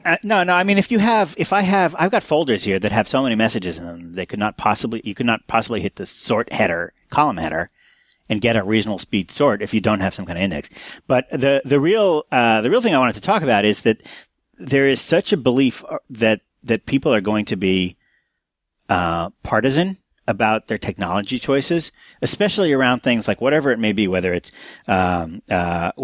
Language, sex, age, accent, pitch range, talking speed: English, male, 40-59, American, 100-140 Hz, 220 wpm